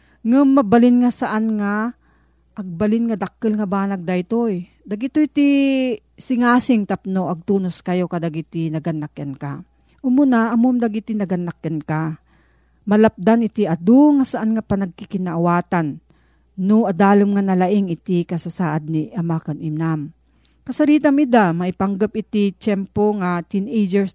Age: 40-59